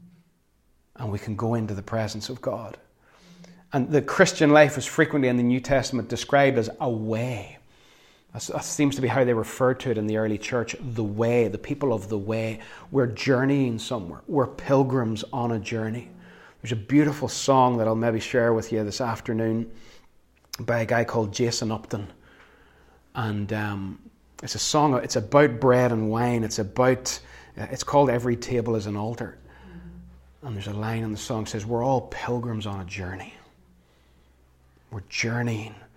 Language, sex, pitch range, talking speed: English, male, 110-130 Hz, 175 wpm